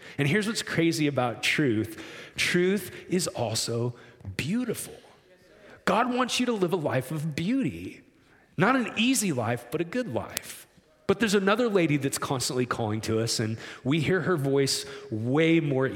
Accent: American